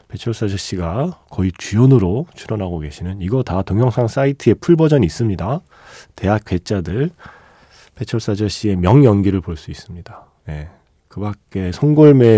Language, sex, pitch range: Korean, male, 85-130 Hz